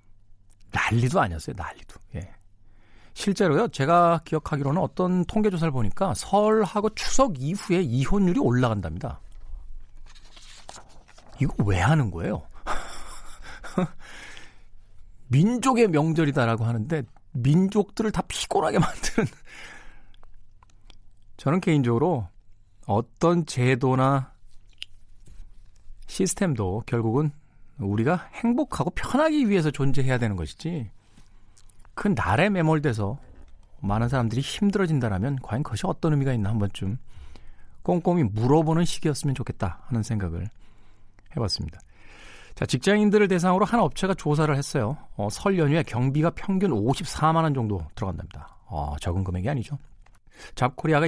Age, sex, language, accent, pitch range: 40-59, male, Korean, native, 100-160 Hz